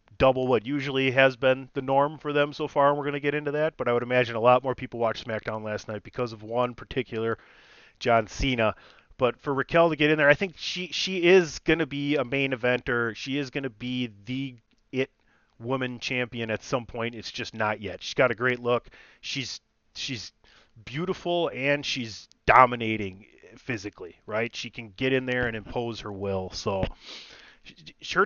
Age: 30-49